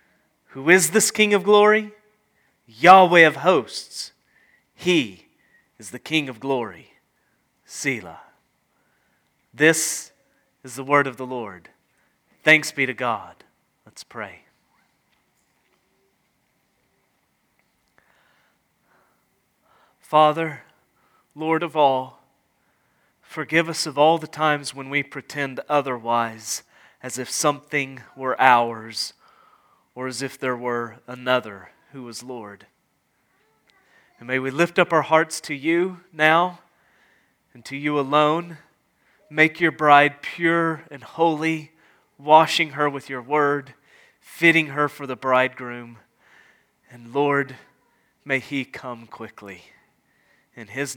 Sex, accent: male, American